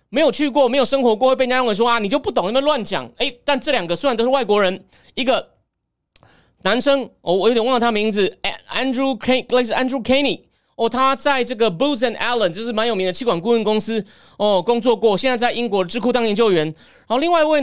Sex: male